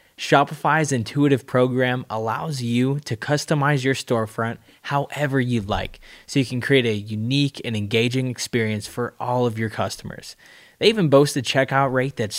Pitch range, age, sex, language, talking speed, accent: 115-140 Hz, 20-39, male, English, 160 wpm, American